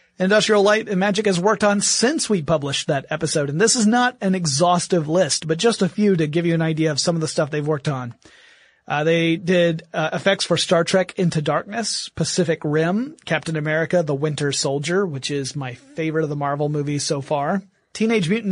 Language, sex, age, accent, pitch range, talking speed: English, male, 30-49, American, 160-205 Hz, 210 wpm